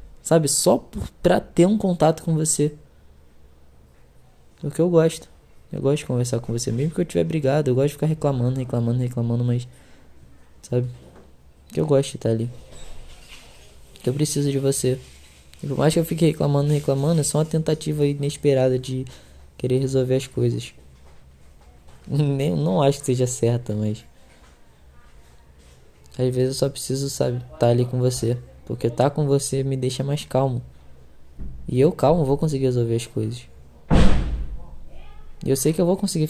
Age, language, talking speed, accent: 10-29, Portuguese, 170 wpm, Brazilian